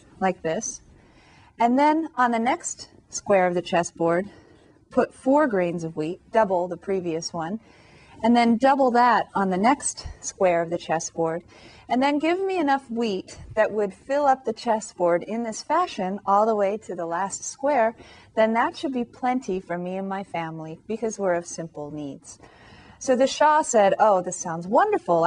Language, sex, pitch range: English, female, 175-245 Hz